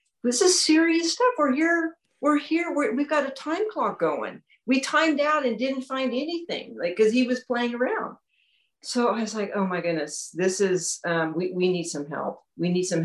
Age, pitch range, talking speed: 50-69, 175-260 Hz, 210 wpm